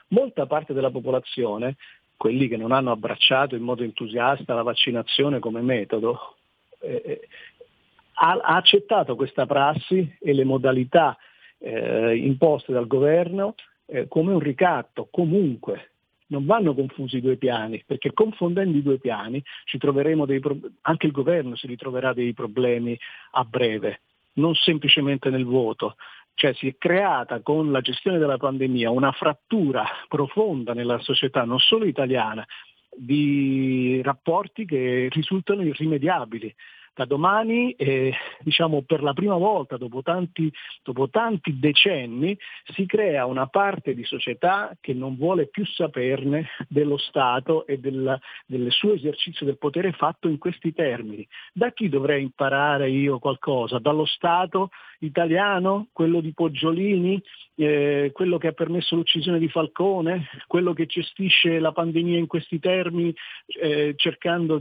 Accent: native